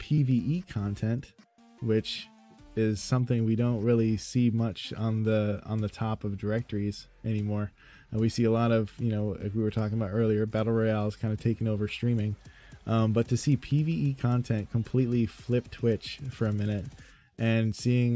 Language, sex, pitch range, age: English, male, 110-125 Hz, 20-39